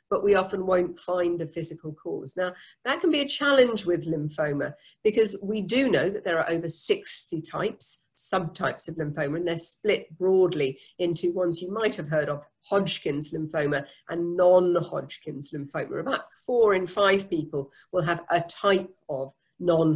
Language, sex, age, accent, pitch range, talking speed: English, female, 50-69, British, 155-195 Hz, 170 wpm